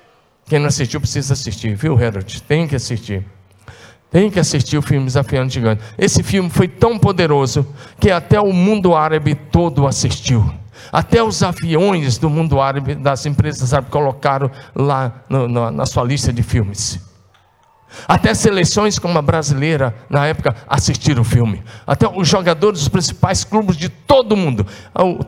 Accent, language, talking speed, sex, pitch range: Brazilian, Portuguese, 160 wpm, male, 115-160 Hz